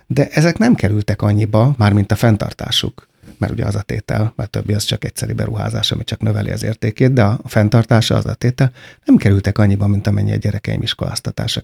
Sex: male